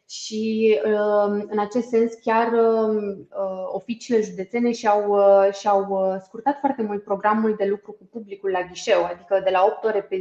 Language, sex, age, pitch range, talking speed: Romanian, female, 20-39, 190-225 Hz, 140 wpm